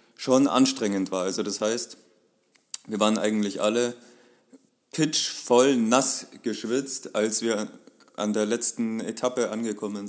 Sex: male